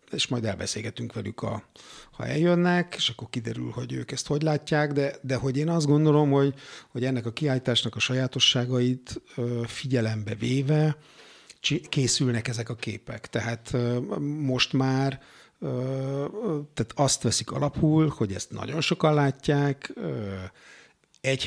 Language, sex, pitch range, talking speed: Hungarian, male, 115-145 Hz, 125 wpm